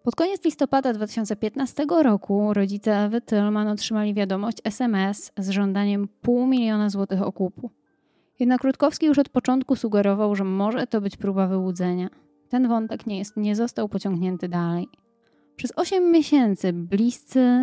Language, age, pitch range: Polish, 20-39, 195-235 Hz